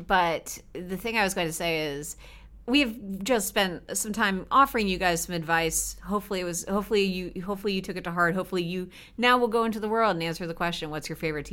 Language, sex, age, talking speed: English, female, 30-49, 235 wpm